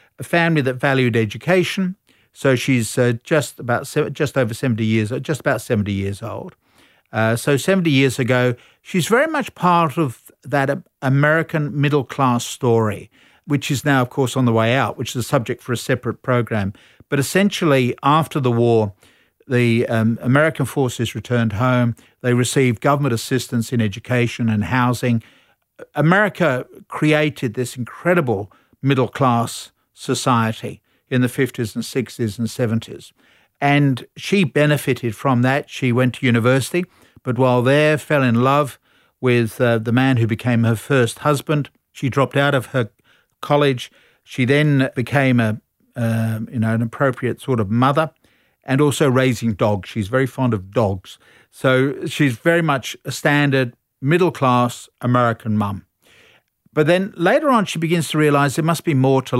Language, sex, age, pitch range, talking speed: English, male, 50-69, 115-145 Hz, 160 wpm